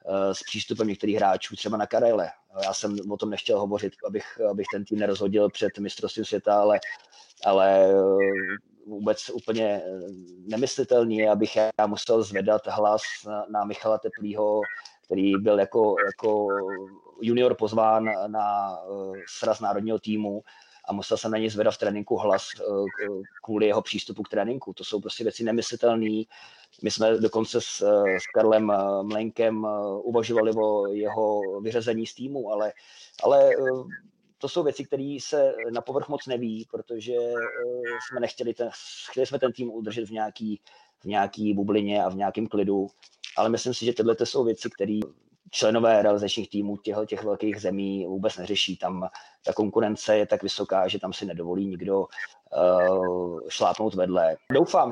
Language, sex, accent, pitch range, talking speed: Czech, male, native, 100-120 Hz, 150 wpm